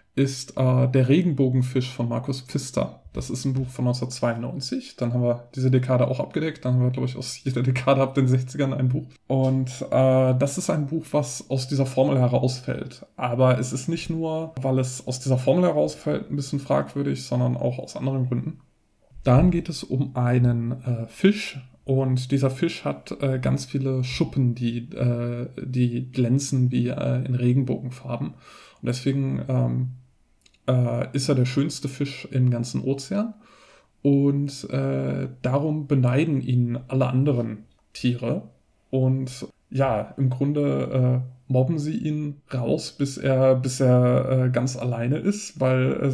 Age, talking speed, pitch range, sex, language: 20-39, 165 wpm, 125-140 Hz, male, German